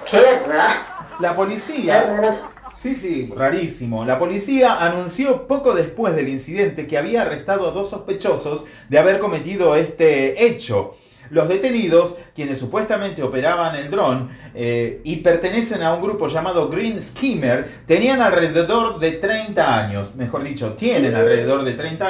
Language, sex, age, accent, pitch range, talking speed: Spanish, male, 30-49, Argentinian, 135-220 Hz, 140 wpm